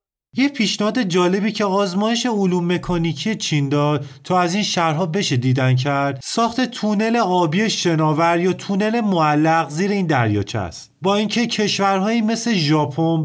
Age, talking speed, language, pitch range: 30-49, 145 wpm, English, 145-190 Hz